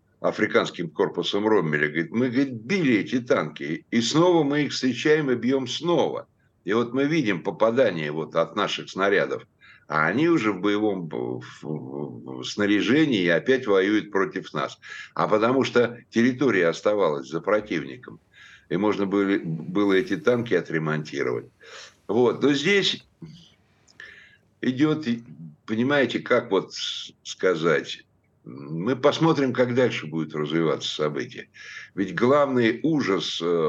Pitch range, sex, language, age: 85-130 Hz, male, Russian, 60-79